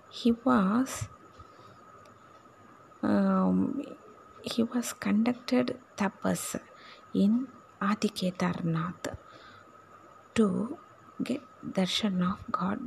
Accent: native